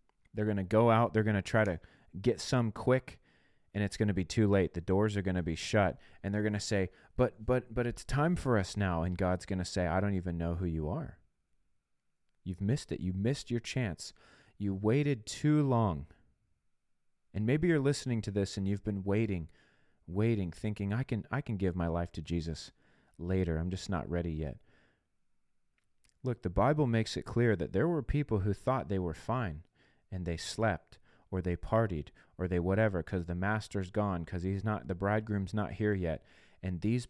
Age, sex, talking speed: 30-49, male, 205 wpm